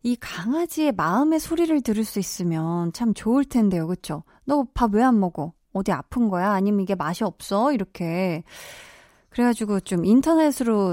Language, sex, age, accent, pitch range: Korean, female, 20-39, native, 180-240 Hz